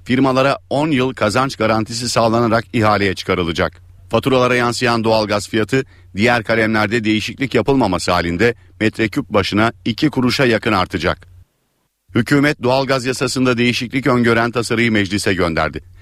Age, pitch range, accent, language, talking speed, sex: 50-69, 95-125 Hz, native, Turkish, 115 wpm, male